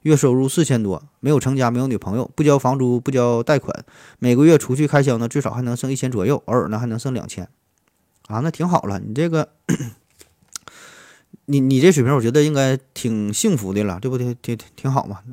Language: Chinese